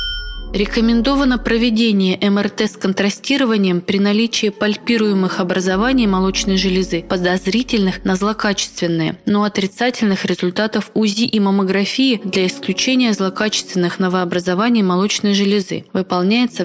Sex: female